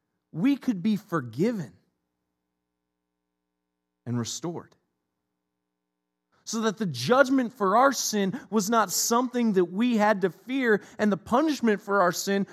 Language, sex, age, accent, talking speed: English, male, 40-59, American, 130 wpm